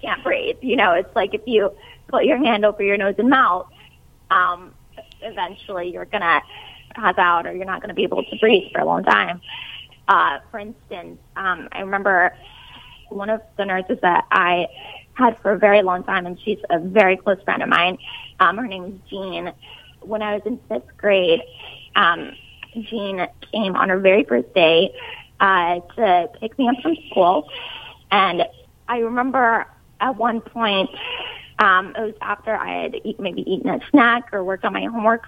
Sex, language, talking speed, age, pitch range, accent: female, English, 185 wpm, 20-39, 190-240 Hz, American